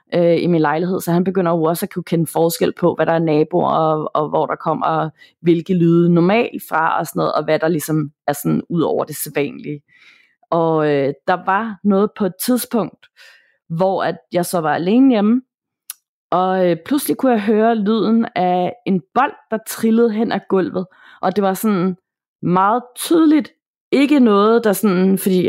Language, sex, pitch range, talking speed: Danish, female, 170-220 Hz, 190 wpm